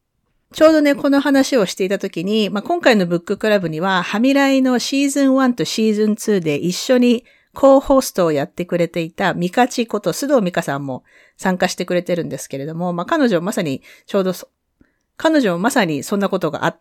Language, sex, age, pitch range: Japanese, female, 40-59, 170-255 Hz